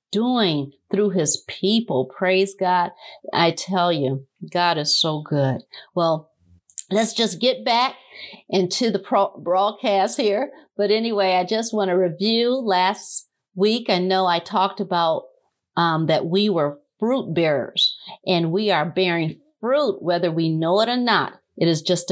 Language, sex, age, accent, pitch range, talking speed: English, female, 50-69, American, 170-240 Hz, 150 wpm